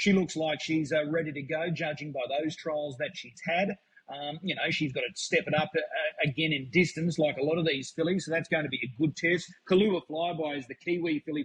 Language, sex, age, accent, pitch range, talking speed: English, male, 30-49, Australian, 145-170 Hz, 240 wpm